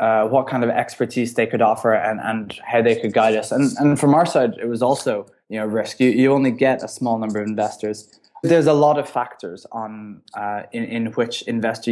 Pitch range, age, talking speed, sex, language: 110-125 Hz, 20-39, 230 wpm, male, English